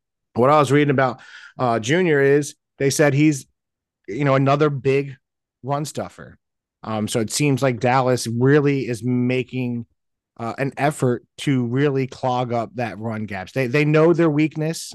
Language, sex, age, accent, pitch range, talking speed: English, male, 30-49, American, 120-145 Hz, 165 wpm